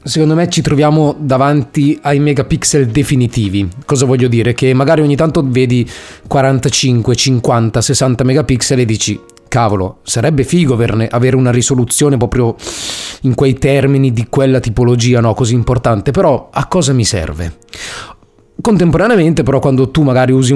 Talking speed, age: 140 wpm, 30-49